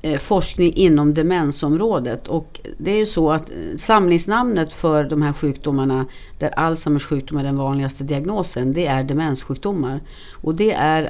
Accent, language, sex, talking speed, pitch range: native, Swedish, female, 145 wpm, 135-175 Hz